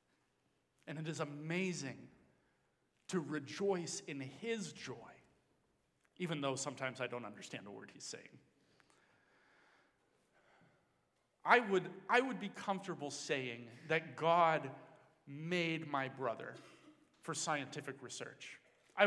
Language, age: English, 40-59